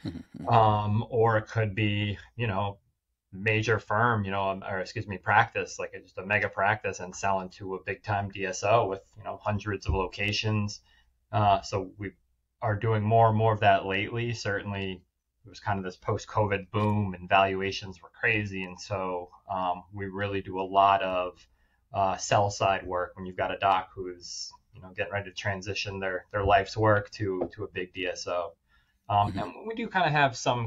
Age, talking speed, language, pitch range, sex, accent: 20-39, 195 wpm, English, 95-110 Hz, male, American